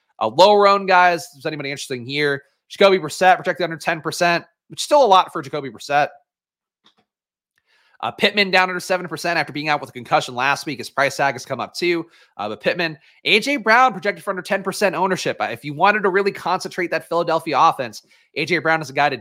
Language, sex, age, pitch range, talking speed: English, male, 30-49, 140-185 Hz, 220 wpm